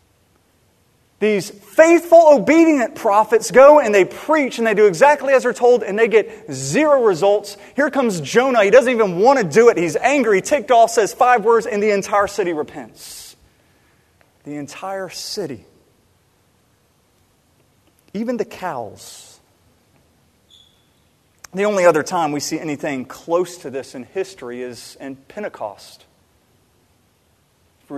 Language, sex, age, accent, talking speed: English, male, 30-49, American, 140 wpm